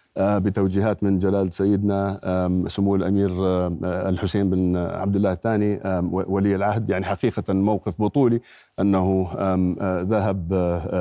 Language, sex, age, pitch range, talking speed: Arabic, male, 50-69, 95-110 Hz, 105 wpm